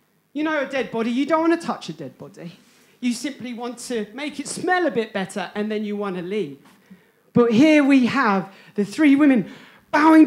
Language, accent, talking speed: English, British, 215 wpm